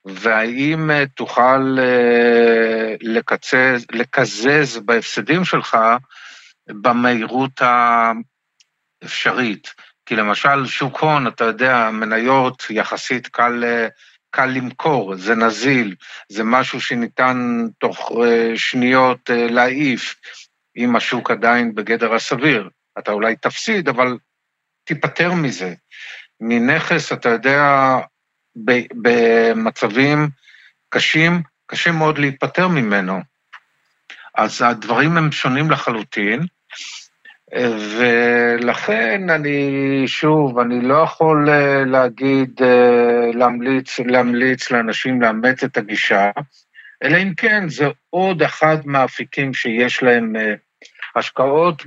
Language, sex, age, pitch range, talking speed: Hebrew, male, 50-69, 120-140 Hz, 85 wpm